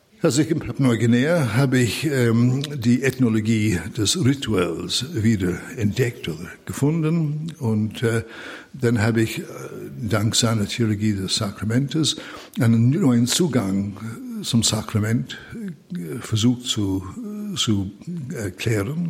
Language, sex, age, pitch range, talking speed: German, male, 60-79, 110-135 Hz, 105 wpm